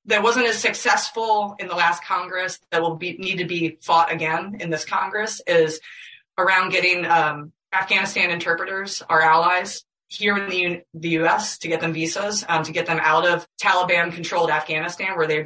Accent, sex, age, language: American, female, 20-39, English